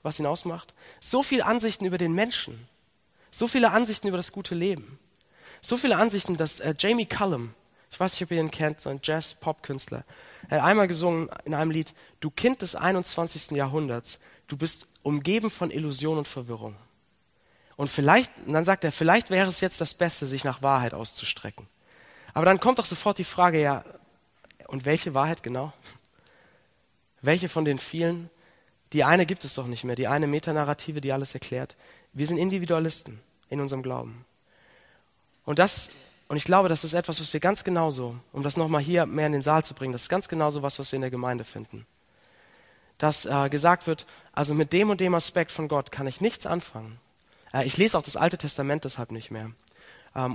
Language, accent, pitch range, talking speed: German, German, 135-180 Hz, 195 wpm